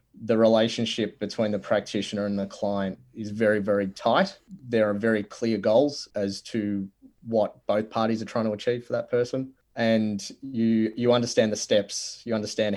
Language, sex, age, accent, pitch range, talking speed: English, male, 20-39, Australian, 100-120 Hz, 175 wpm